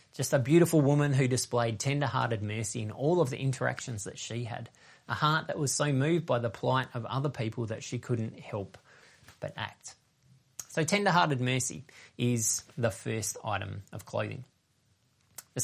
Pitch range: 120-150 Hz